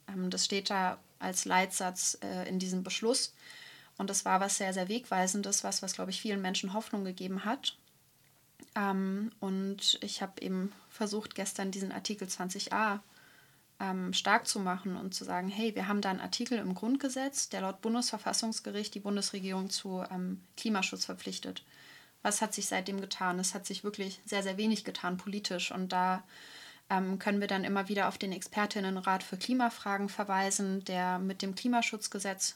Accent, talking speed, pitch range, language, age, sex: German, 165 wpm, 185-210 Hz, German, 20-39, female